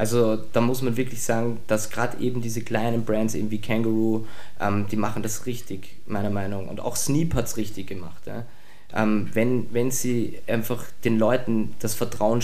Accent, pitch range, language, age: German, 110-120 Hz, German, 20-39